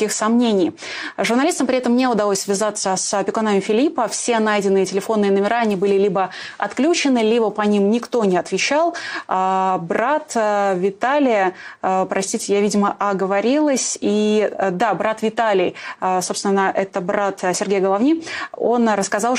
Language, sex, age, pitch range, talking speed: Russian, female, 20-39, 200-240 Hz, 130 wpm